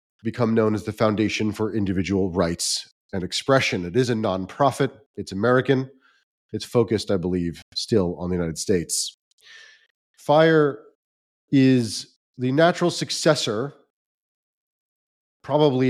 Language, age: English, 40-59